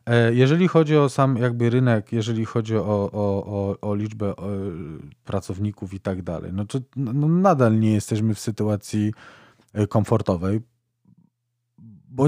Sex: male